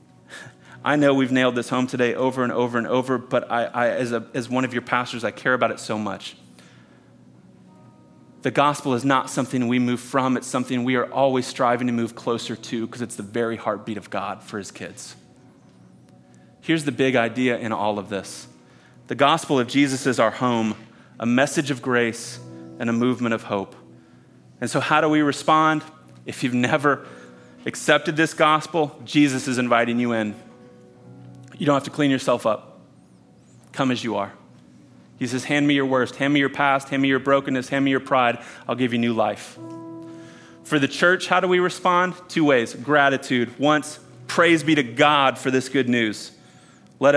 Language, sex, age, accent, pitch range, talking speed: English, male, 30-49, American, 110-140 Hz, 190 wpm